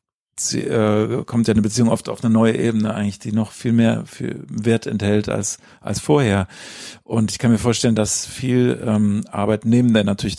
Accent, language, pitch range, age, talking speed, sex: German, German, 105-120 Hz, 50-69, 195 wpm, male